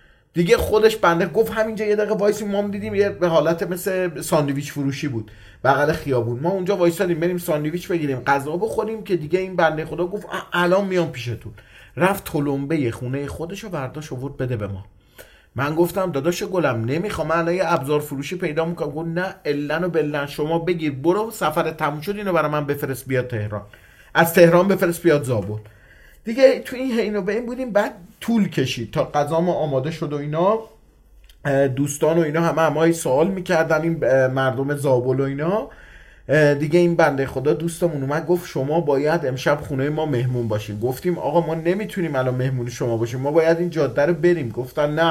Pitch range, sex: 135-175 Hz, male